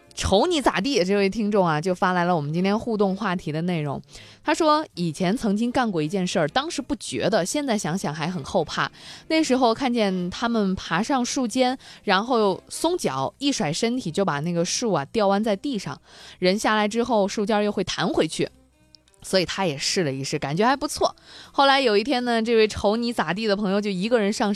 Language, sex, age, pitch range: Chinese, female, 20-39, 170-230 Hz